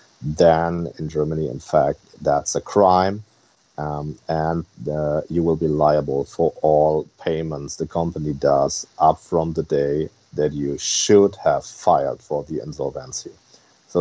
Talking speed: 140 wpm